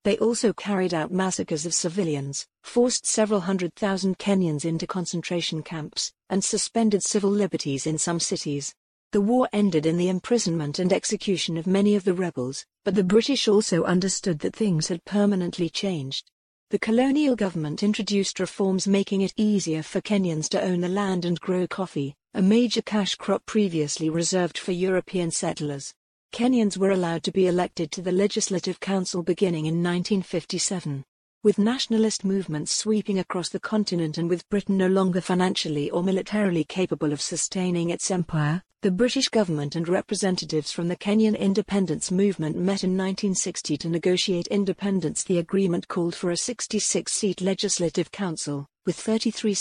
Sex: female